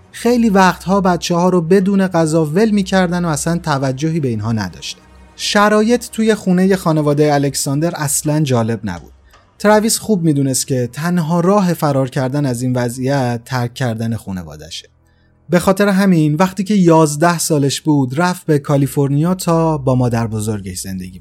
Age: 30-49